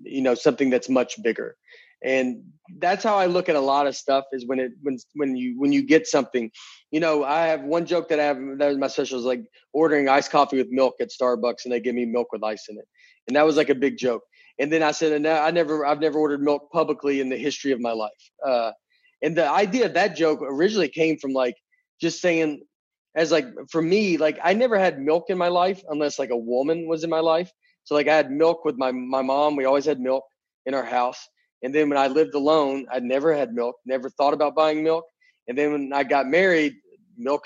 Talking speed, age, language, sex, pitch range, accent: 245 wpm, 30-49, English, male, 135-165 Hz, American